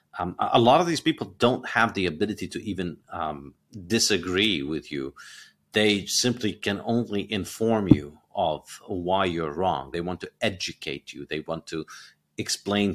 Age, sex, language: 40-59, male, English